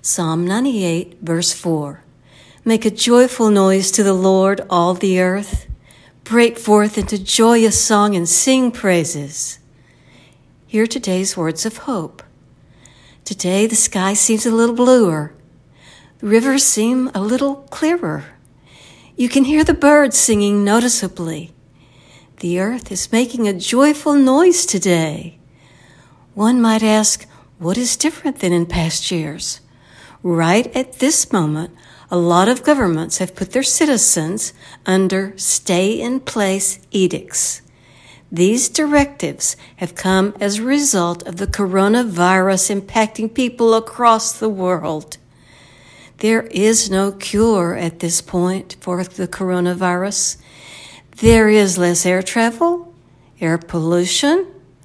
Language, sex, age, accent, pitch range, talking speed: English, female, 60-79, American, 175-235 Hz, 125 wpm